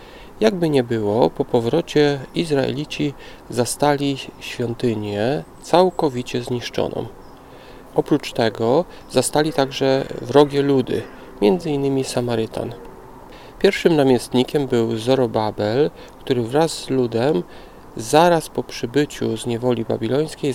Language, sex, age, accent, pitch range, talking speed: Polish, male, 40-59, native, 120-150 Hz, 95 wpm